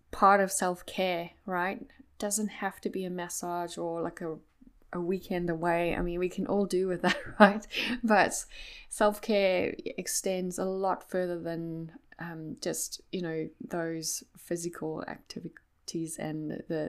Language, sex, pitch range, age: English, female, 170-205 Hz, 10-29